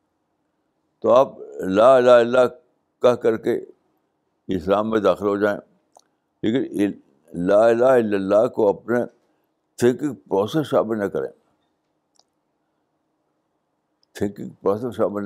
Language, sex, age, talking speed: Urdu, male, 60-79, 105 wpm